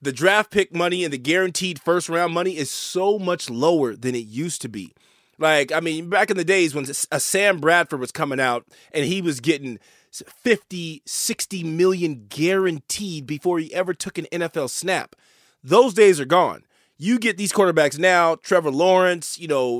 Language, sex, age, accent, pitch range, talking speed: English, male, 30-49, American, 165-210 Hz, 180 wpm